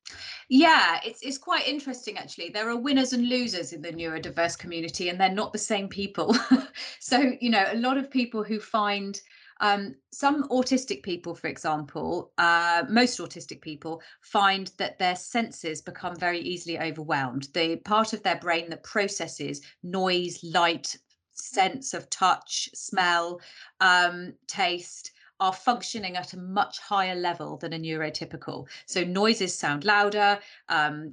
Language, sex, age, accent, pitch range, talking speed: English, female, 30-49, British, 170-225 Hz, 150 wpm